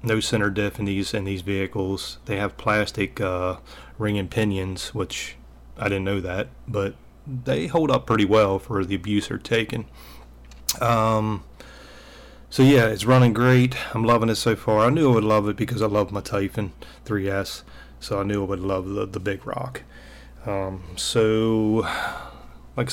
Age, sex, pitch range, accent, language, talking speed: 30-49, male, 100-120 Hz, American, English, 175 wpm